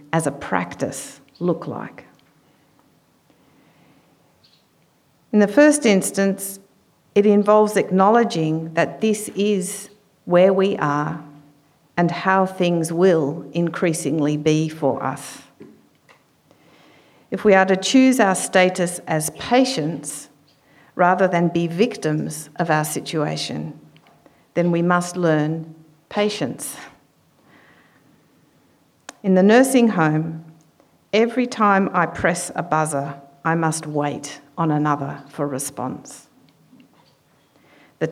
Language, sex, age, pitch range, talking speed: English, female, 50-69, 150-195 Hz, 100 wpm